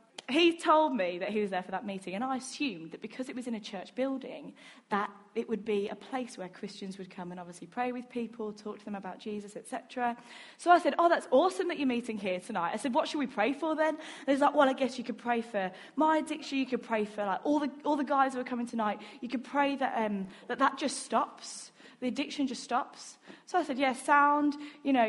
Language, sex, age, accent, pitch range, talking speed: English, female, 20-39, British, 230-300 Hz, 255 wpm